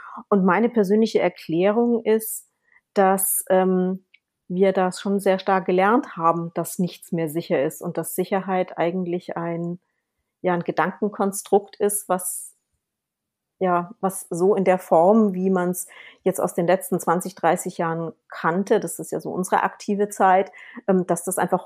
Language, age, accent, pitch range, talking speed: German, 40-59, German, 170-195 Hz, 160 wpm